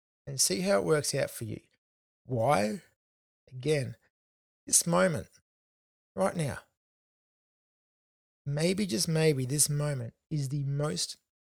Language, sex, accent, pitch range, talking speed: English, male, Australian, 125-160 Hz, 115 wpm